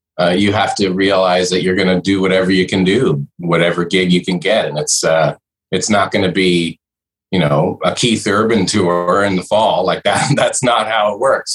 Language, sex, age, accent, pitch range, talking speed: English, male, 30-49, American, 85-105 Hz, 225 wpm